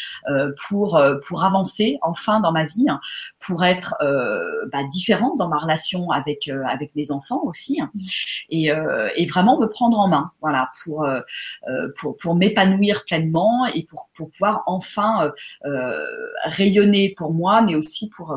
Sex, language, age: female, French, 30-49